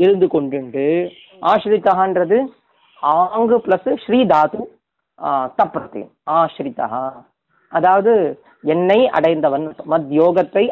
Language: Tamil